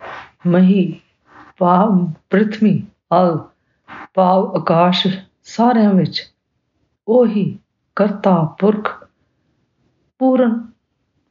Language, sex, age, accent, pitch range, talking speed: English, female, 50-69, Indian, 165-195 Hz, 65 wpm